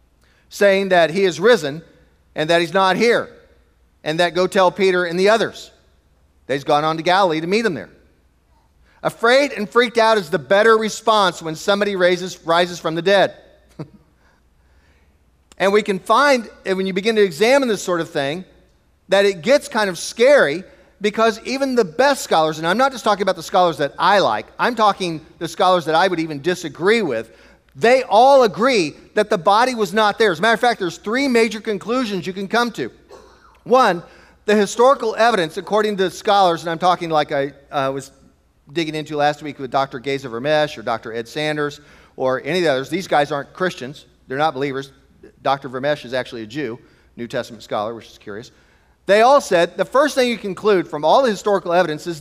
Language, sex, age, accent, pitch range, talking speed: English, male, 40-59, American, 145-210 Hz, 200 wpm